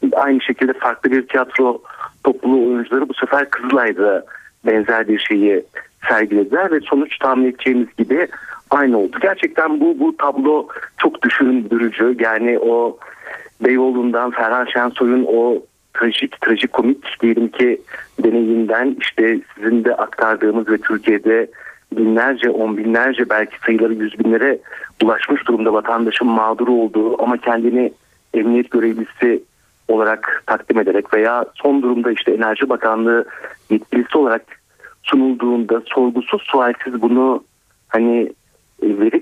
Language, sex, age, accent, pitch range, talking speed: Turkish, male, 50-69, native, 115-130 Hz, 120 wpm